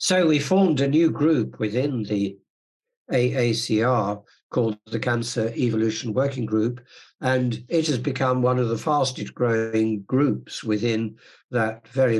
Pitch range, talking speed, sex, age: 105-130 Hz, 140 wpm, male, 60-79